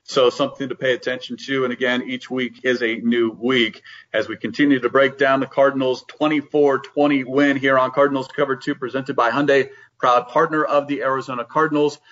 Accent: American